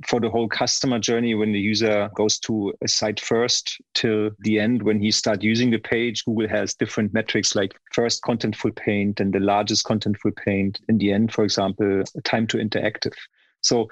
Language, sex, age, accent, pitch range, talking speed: English, male, 40-59, German, 105-120 Hz, 190 wpm